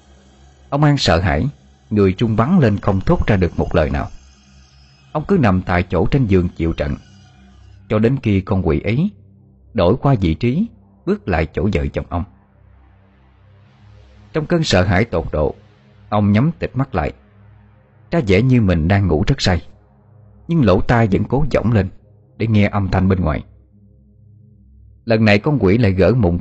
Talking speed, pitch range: 180 wpm, 85-105 Hz